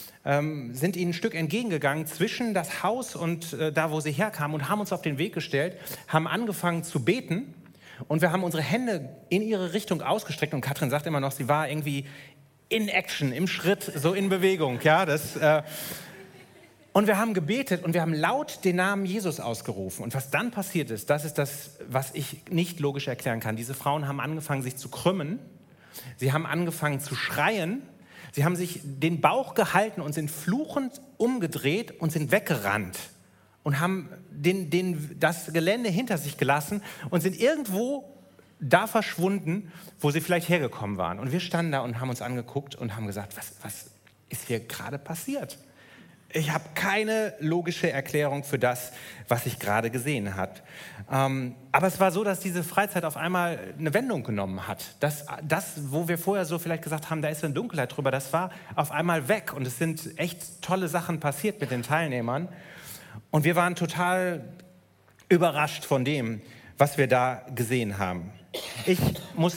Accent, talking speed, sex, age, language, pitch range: German, 180 wpm, male, 30-49, German, 140-180 Hz